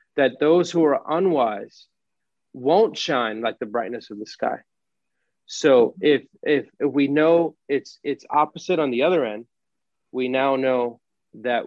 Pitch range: 115-145 Hz